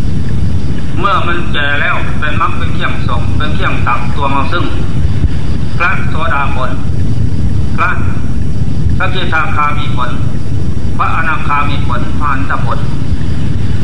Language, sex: Thai, male